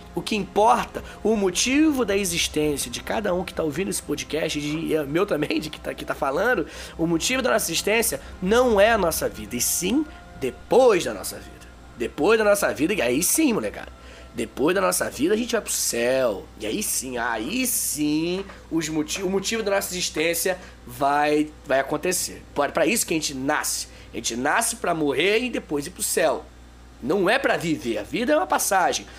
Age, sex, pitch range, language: 20-39, male, 140-225 Hz, Portuguese